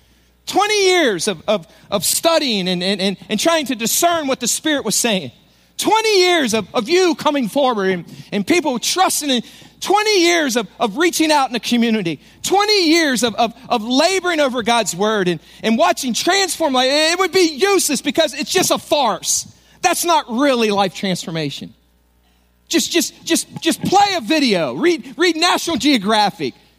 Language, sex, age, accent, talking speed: English, male, 40-59, American, 175 wpm